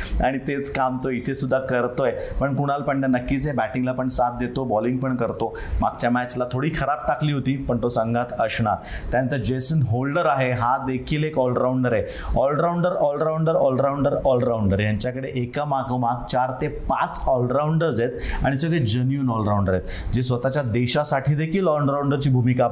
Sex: male